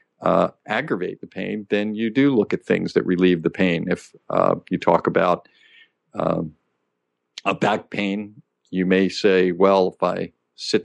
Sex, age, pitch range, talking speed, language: male, 50-69, 85-95 Hz, 165 wpm, English